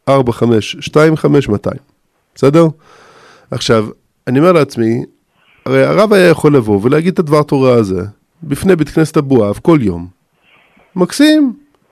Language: Hebrew